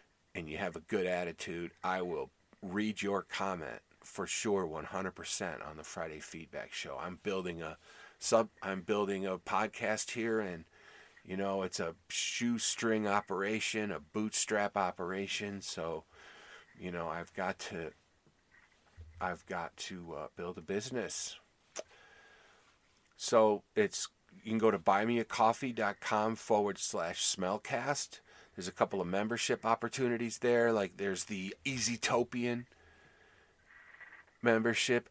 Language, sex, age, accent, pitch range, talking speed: English, male, 40-59, American, 95-115 Hz, 130 wpm